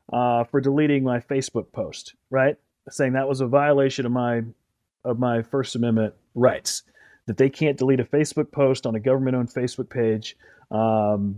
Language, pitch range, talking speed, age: English, 125-155 Hz, 175 wpm, 30-49